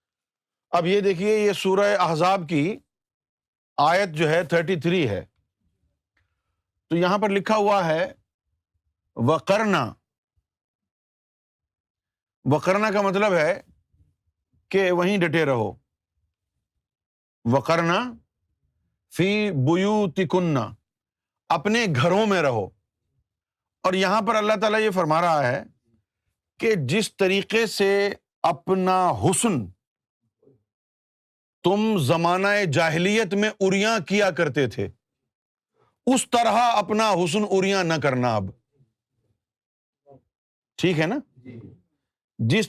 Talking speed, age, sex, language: 95 wpm, 50-69, male, Urdu